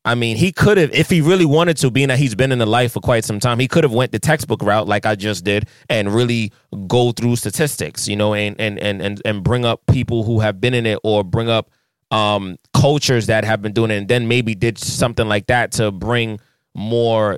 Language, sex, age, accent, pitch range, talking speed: English, male, 20-39, American, 110-130 Hz, 245 wpm